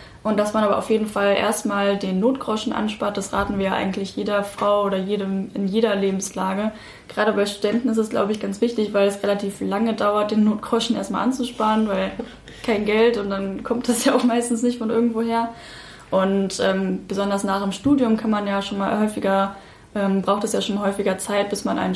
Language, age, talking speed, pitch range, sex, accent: German, 10-29, 210 wpm, 195-220 Hz, female, German